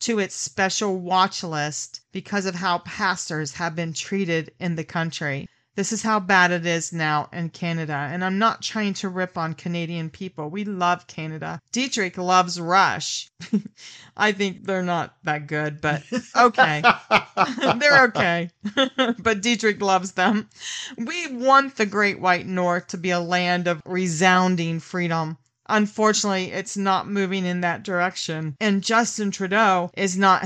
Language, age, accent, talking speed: English, 40-59, American, 155 wpm